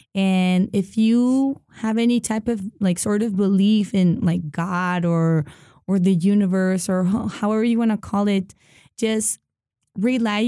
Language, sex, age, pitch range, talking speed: English, female, 20-39, 185-220 Hz, 160 wpm